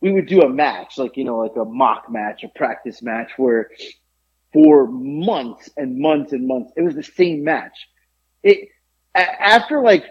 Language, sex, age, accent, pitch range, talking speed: English, male, 30-49, American, 130-215 Hz, 180 wpm